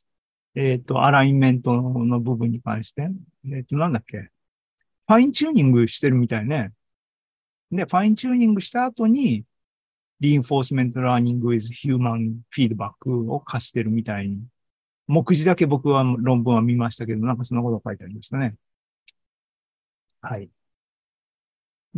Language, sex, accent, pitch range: Japanese, male, native, 115-155 Hz